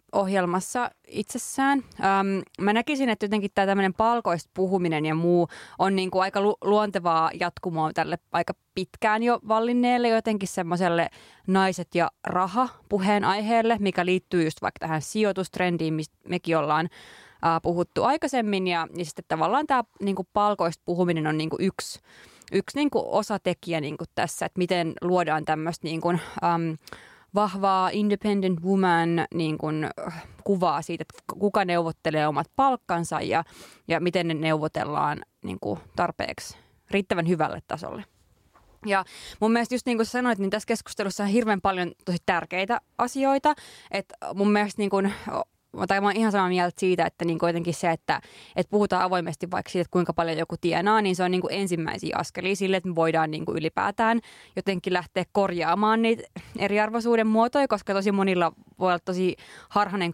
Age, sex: 20-39, female